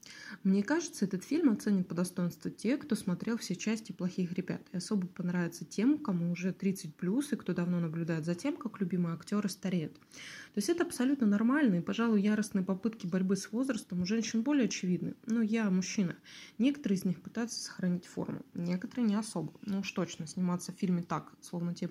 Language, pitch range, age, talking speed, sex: Russian, 180-230 Hz, 20-39, 190 wpm, female